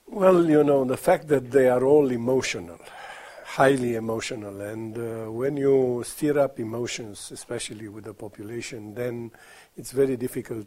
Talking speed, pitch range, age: 150 wpm, 110-125 Hz, 50-69